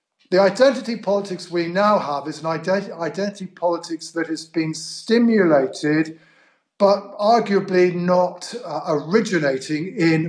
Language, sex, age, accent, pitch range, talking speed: English, male, 50-69, British, 155-200 Hz, 115 wpm